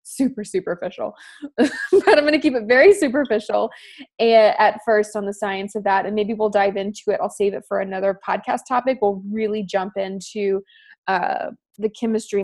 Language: English